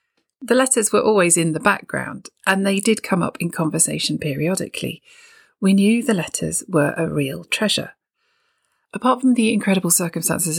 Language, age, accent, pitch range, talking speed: English, 40-59, British, 160-225 Hz, 160 wpm